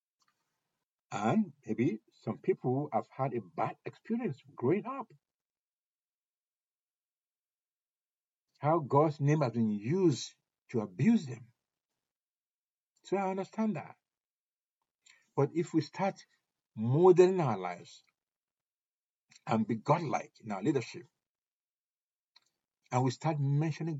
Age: 60-79